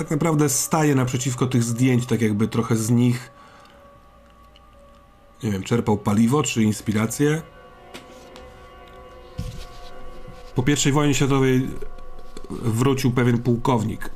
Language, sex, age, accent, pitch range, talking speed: Polish, male, 40-59, native, 110-130 Hz, 100 wpm